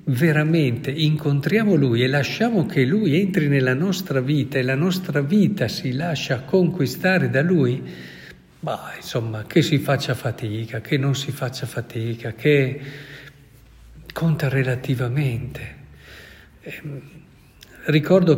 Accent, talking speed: native, 115 wpm